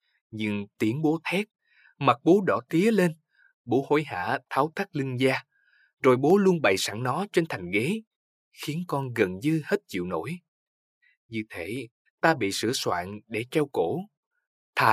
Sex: male